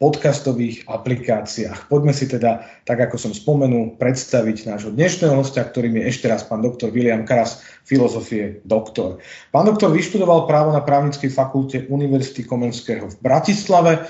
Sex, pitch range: male, 120-150 Hz